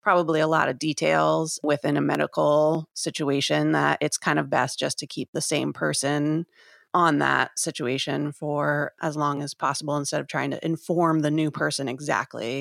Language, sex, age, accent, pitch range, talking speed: English, female, 30-49, American, 155-190 Hz, 175 wpm